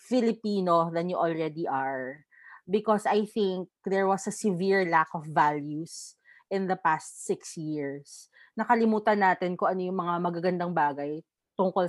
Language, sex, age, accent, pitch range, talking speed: Filipino, female, 20-39, native, 170-215 Hz, 145 wpm